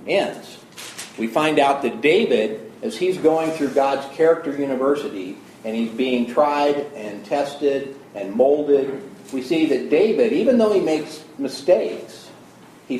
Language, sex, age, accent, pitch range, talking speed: English, male, 50-69, American, 125-165 Hz, 145 wpm